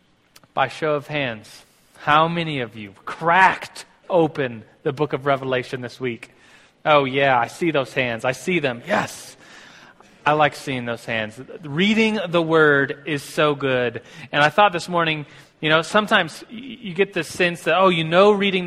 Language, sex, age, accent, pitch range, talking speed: English, male, 30-49, American, 145-180 Hz, 175 wpm